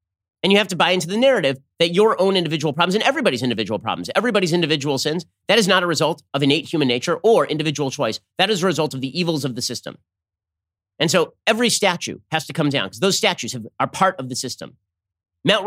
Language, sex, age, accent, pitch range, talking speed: English, male, 30-49, American, 110-170 Hz, 225 wpm